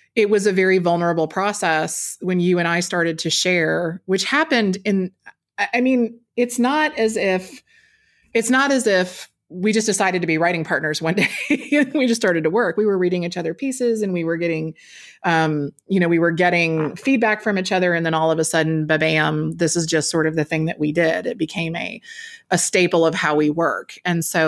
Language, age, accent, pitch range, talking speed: English, 30-49, American, 165-210 Hz, 215 wpm